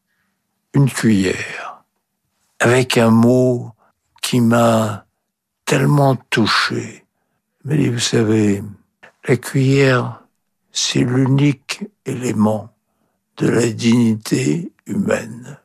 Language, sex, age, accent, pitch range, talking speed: French, male, 60-79, French, 110-135 Hz, 80 wpm